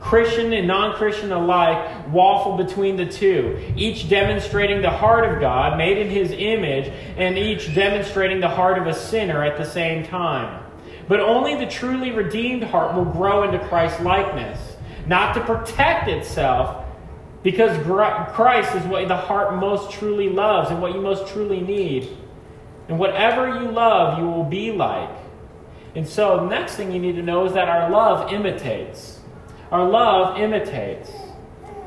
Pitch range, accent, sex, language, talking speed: 175-215 Hz, American, male, English, 160 wpm